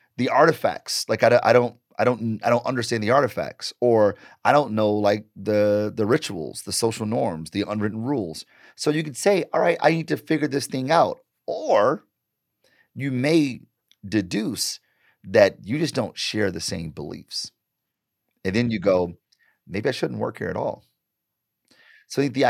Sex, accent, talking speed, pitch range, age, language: male, American, 175 wpm, 100-130 Hz, 30-49, English